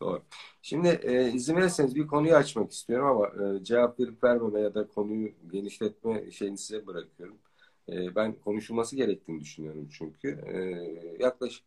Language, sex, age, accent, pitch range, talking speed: Turkish, male, 50-69, native, 100-130 Hz, 145 wpm